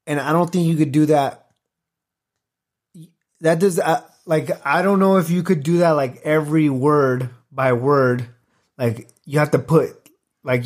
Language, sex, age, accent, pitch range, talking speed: English, male, 30-49, American, 130-160 Hz, 175 wpm